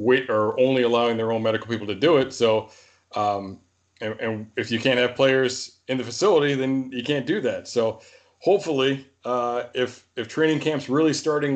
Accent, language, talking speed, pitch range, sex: American, English, 185 wpm, 115-140 Hz, male